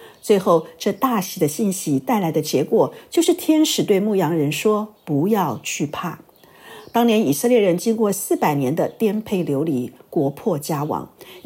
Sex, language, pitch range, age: female, Chinese, 170-235 Hz, 50-69